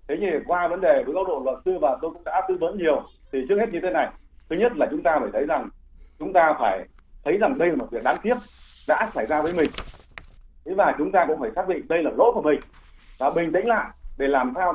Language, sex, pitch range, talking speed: Vietnamese, male, 150-230 Hz, 270 wpm